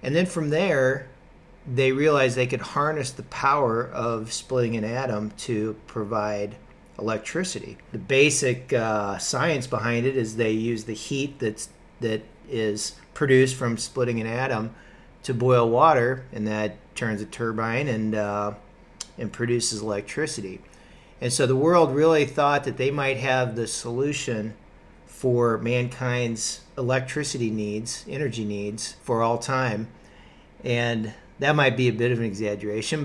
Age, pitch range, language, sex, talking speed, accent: 40-59, 110-135 Hz, English, male, 145 wpm, American